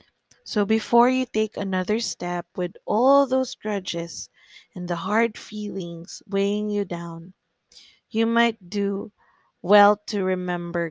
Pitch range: 170-205 Hz